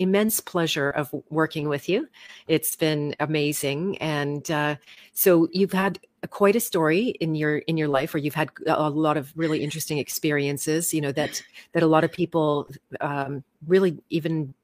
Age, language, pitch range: 40-59, English, 145-170 Hz